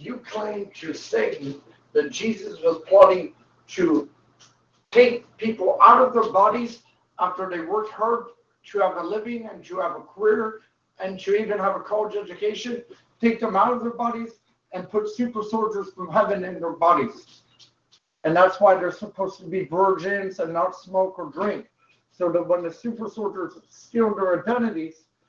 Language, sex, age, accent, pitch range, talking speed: English, male, 50-69, American, 175-220 Hz, 170 wpm